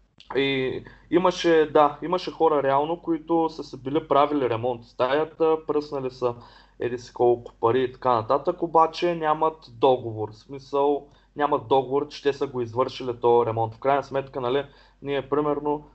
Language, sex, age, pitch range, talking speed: Bulgarian, male, 20-39, 120-150 Hz, 150 wpm